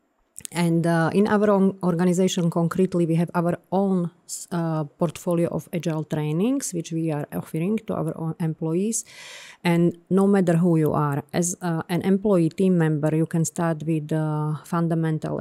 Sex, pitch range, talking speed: female, 155-180 Hz, 165 wpm